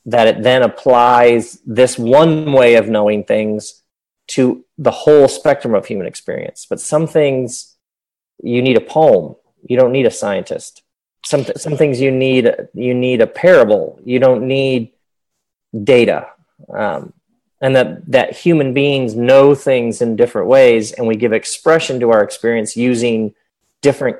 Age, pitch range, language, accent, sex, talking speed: 40-59, 115-160 Hz, English, American, male, 155 wpm